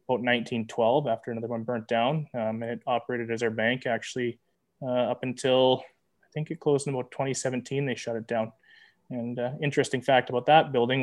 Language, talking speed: English, 190 wpm